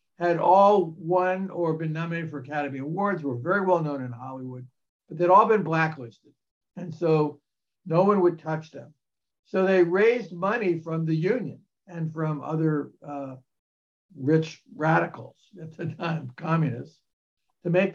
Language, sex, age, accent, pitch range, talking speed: English, male, 60-79, American, 150-185 Hz, 155 wpm